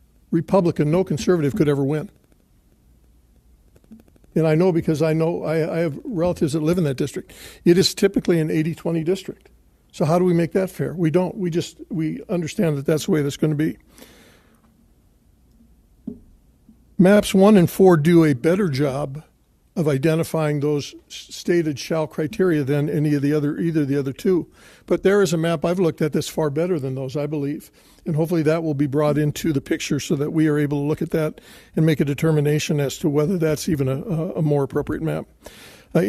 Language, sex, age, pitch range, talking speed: English, male, 60-79, 145-175 Hz, 200 wpm